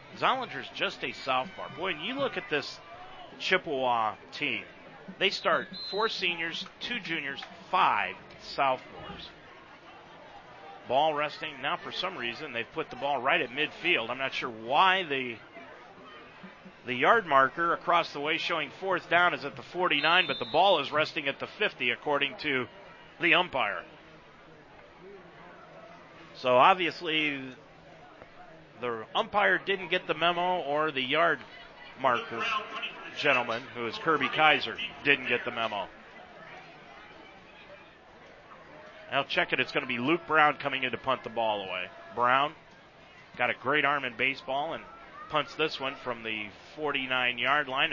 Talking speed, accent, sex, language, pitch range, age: 145 wpm, American, male, English, 125-165 Hz, 40-59